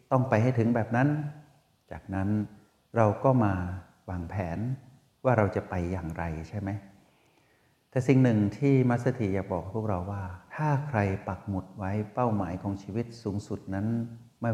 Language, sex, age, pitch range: Thai, male, 60-79, 95-115 Hz